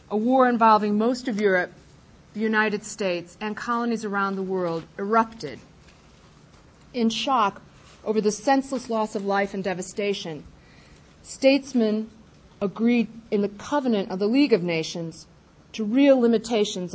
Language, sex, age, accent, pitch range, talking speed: English, female, 40-59, American, 185-230 Hz, 135 wpm